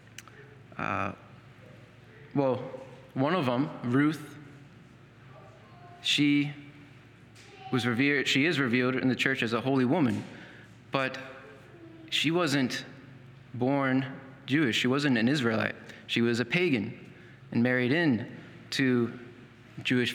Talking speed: 110 wpm